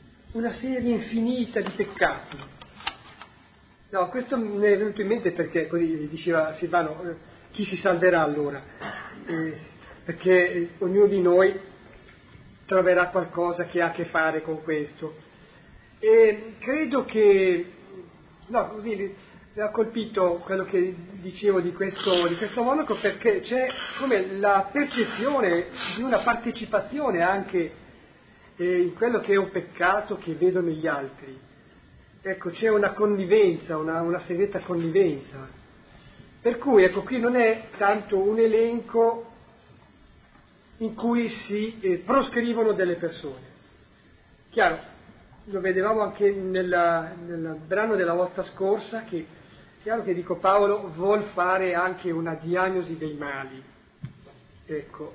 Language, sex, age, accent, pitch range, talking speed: Italian, male, 40-59, native, 170-215 Hz, 125 wpm